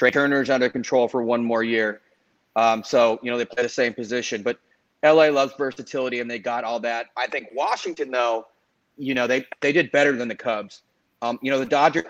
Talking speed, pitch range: 220 wpm, 115-130 Hz